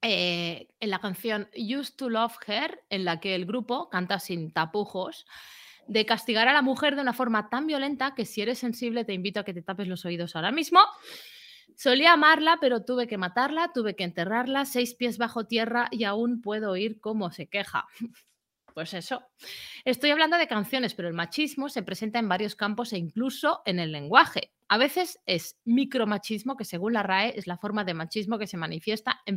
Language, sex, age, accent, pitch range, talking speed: Spanish, female, 30-49, Spanish, 185-250 Hz, 195 wpm